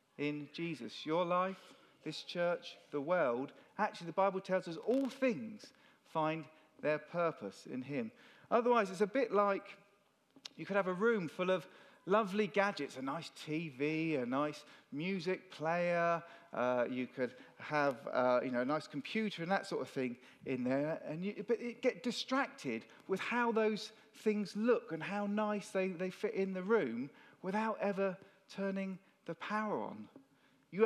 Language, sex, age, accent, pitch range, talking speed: English, male, 40-59, British, 155-220 Hz, 165 wpm